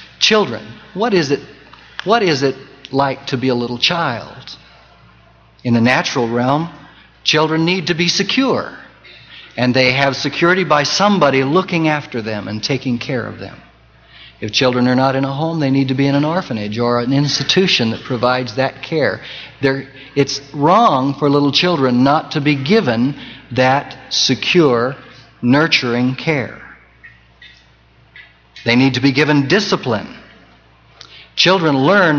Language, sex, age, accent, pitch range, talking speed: English, male, 60-79, American, 120-155 Hz, 145 wpm